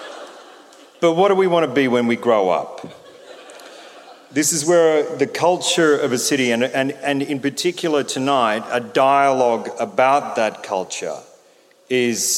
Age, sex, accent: 40-59, male, Australian